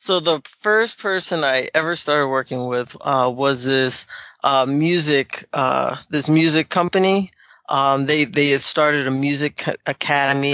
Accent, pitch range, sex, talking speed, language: American, 135-155 Hz, male, 150 wpm, English